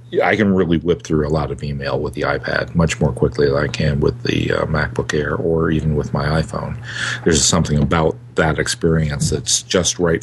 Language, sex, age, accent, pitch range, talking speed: English, male, 50-69, American, 85-115 Hz, 205 wpm